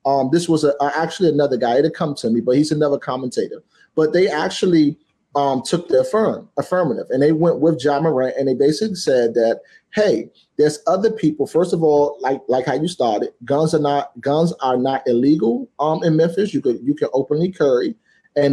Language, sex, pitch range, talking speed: English, male, 140-185 Hz, 210 wpm